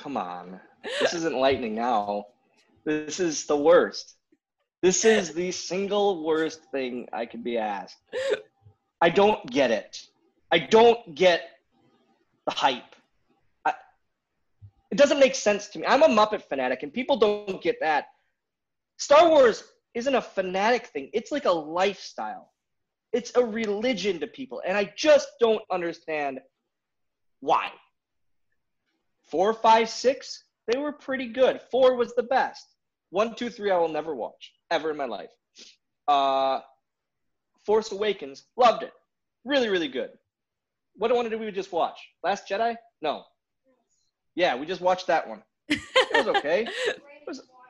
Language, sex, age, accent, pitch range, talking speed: English, male, 30-49, American, 175-270 Hz, 145 wpm